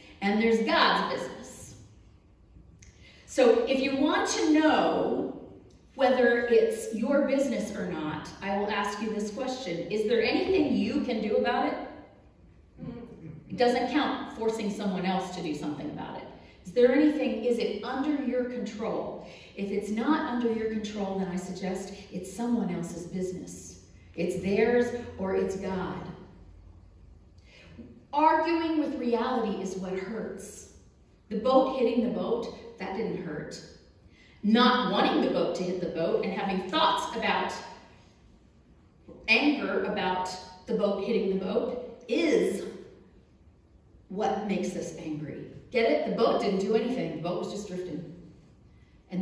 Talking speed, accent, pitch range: 145 wpm, American, 180-245 Hz